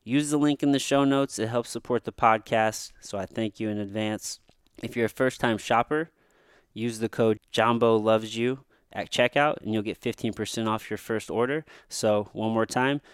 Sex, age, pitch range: male, 20-39, 105-120 Hz